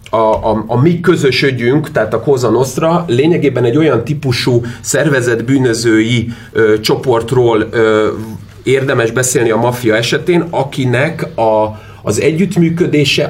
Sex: male